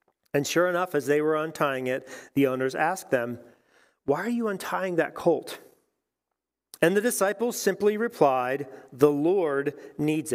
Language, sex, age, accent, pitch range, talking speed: English, male, 40-59, American, 120-165 Hz, 150 wpm